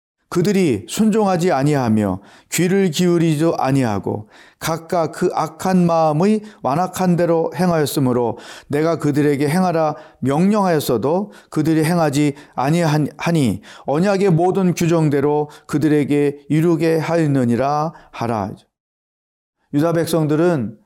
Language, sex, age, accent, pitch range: Korean, male, 40-59, native, 145-190 Hz